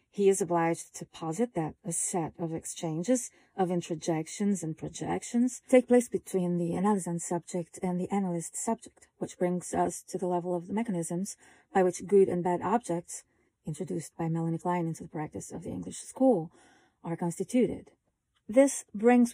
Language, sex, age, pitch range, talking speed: English, female, 30-49, 175-210 Hz, 170 wpm